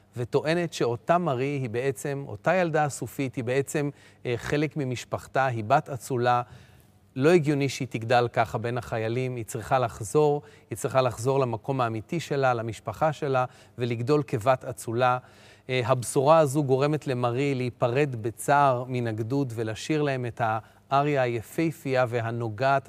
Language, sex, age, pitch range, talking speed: Hebrew, male, 40-59, 115-145 Hz, 135 wpm